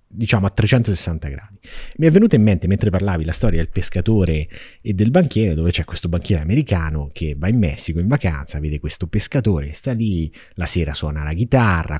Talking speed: 195 wpm